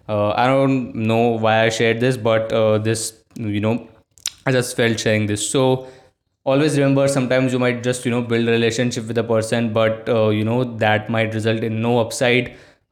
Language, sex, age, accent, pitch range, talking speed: Hindi, male, 20-39, native, 110-130 Hz, 205 wpm